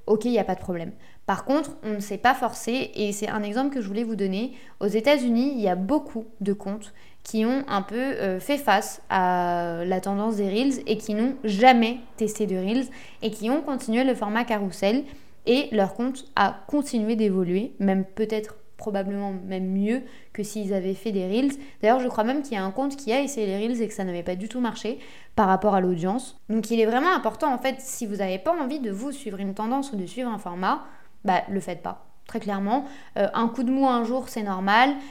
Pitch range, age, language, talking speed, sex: 200-245 Hz, 20-39, French, 235 wpm, female